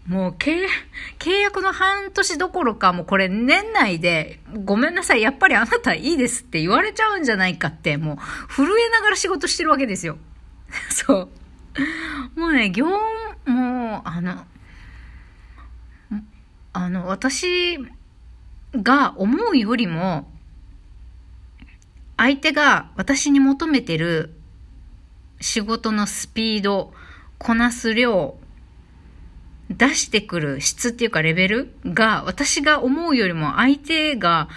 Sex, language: female, Japanese